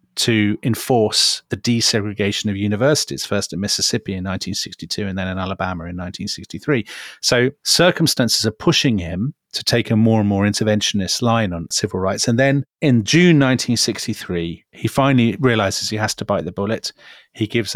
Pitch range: 100-125 Hz